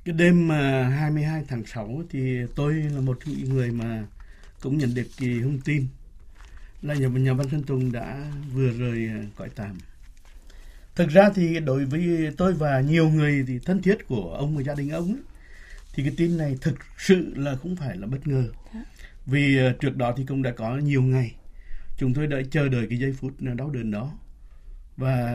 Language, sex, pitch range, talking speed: Vietnamese, male, 110-150 Hz, 190 wpm